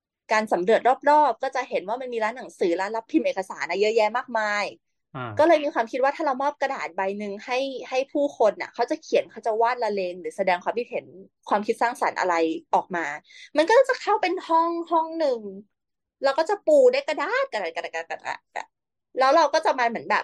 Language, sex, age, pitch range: Thai, female, 20-39, 205-300 Hz